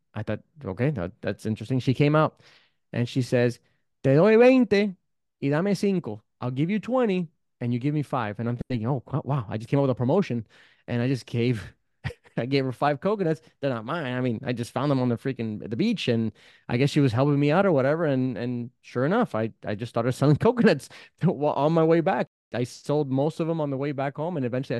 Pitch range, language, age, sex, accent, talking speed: 115-145 Hz, English, 30-49, male, American, 235 wpm